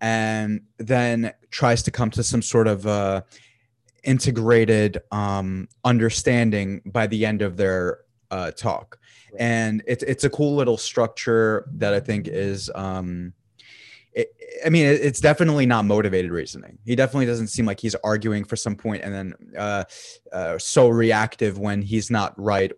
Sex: male